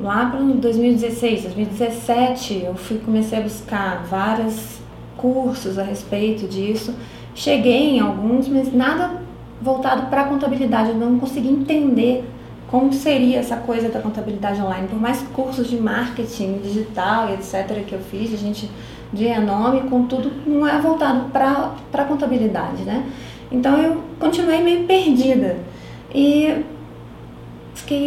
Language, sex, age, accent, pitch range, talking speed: Portuguese, female, 20-39, Brazilian, 210-275 Hz, 140 wpm